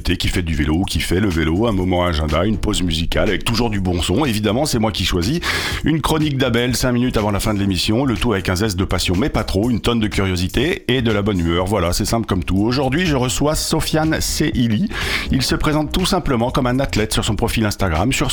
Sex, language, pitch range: male, French, 100-125 Hz